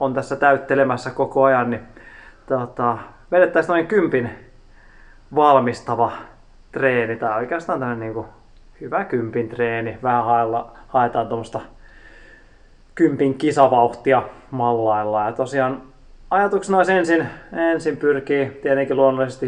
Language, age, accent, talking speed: Finnish, 20-39, native, 115 wpm